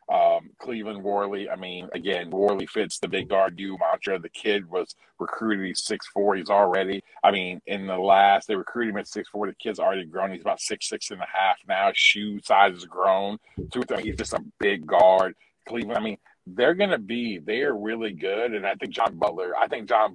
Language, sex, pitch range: English, male, 90-100 Hz